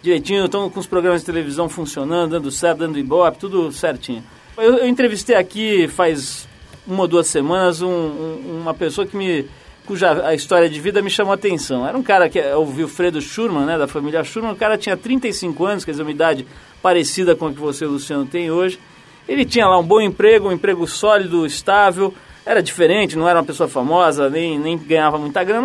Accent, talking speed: Brazilian, 210 wpm